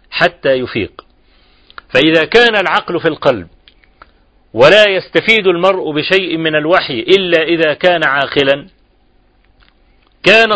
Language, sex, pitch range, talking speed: Arabic, male, 150-190 Hz, 100 wpm